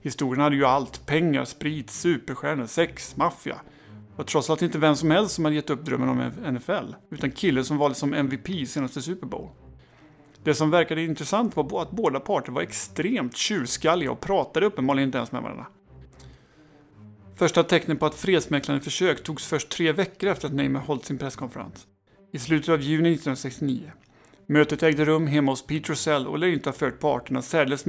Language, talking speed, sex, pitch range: Swedish, 185 wpm, male, 130-155 Hz